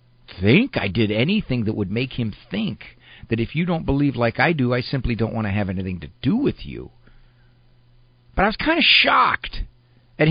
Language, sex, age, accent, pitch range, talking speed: English, male, 50-69, American, 100-120 Hz, 205 wpm